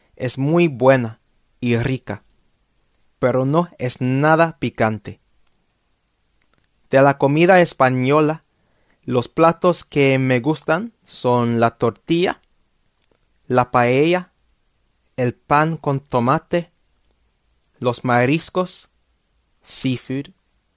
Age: 30-49